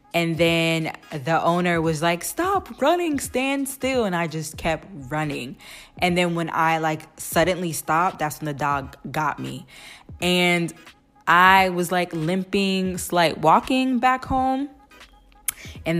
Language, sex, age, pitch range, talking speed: English, female, 10-29, 160-200 Hz, 145 wpm